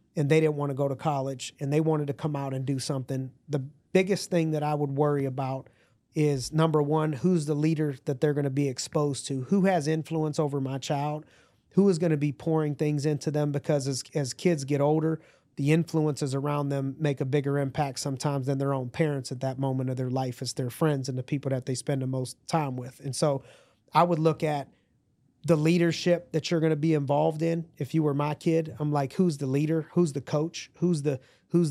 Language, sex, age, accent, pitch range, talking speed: English, male, 30-49, American, 140-160 Hz, 230 wpm